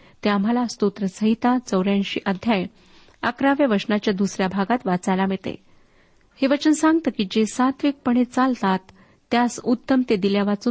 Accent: native